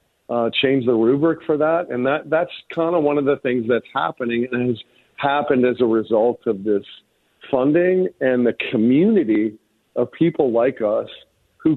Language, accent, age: English, American, 50-69